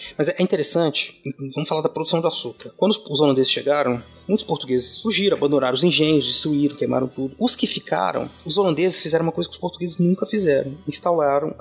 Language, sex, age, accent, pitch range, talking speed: Portuguese, male, 30-49, Brazilian, 130-185 Hz, 185 wpm